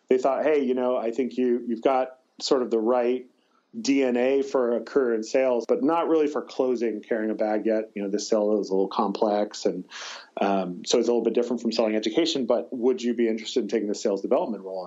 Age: 30-49